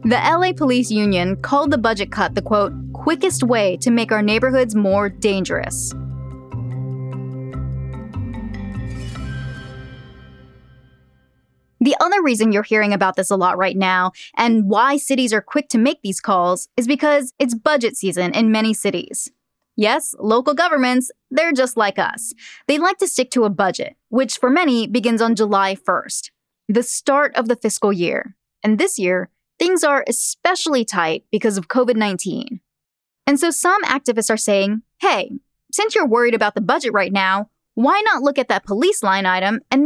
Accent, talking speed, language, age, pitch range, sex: American, 160 wpm, English, 10-29, 195-275 Hz, female